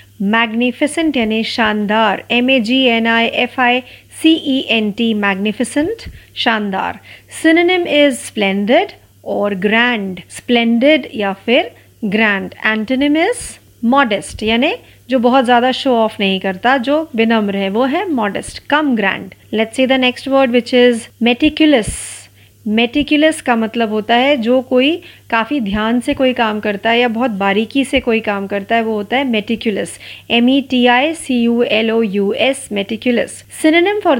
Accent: native